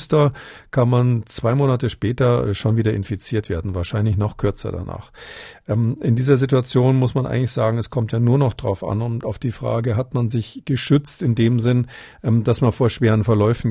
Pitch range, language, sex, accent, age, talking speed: 110-135 Hz, German, male, German, 50-69, 195 wpm